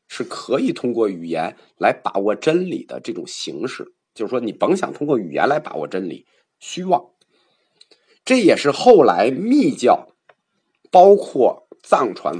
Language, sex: Chinese, male